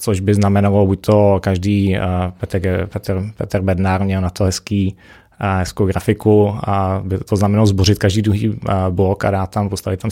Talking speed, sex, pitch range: 170 wpm, male, 95-105 Hz